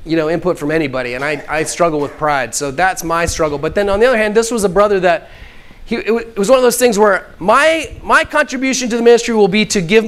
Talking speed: 260 wpm